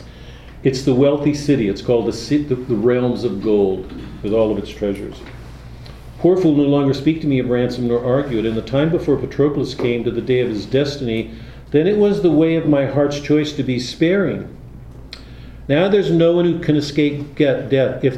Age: 50-69